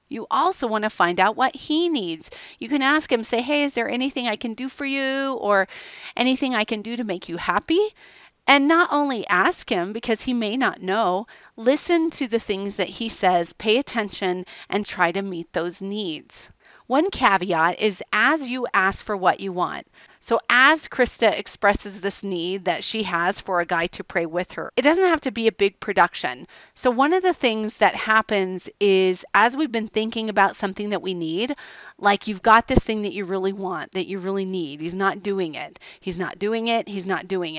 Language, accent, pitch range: English, American, 185-255 Hz